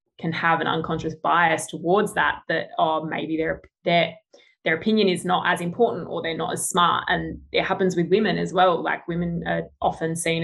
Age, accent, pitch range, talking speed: 20-39, Australian, 160-180 Hz, 195 wpm